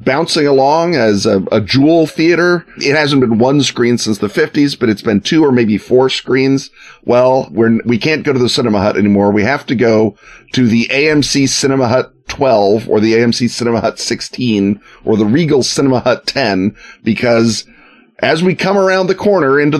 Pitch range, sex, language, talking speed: 115-150 Hz, male, English, 190 wpm